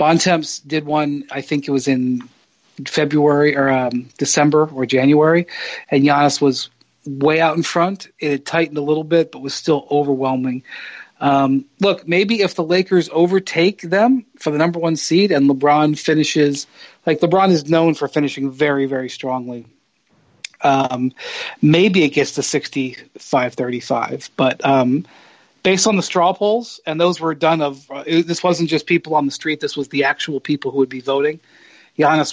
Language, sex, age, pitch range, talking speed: English, male, 40-59, 135-165 Hz, 180 wpm